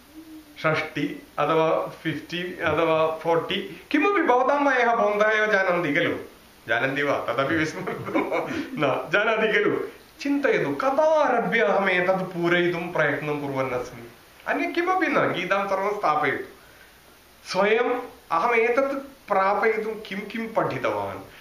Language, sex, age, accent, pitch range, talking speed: English, male, 30-49, Indian, 170-260 Hz, 95 wpm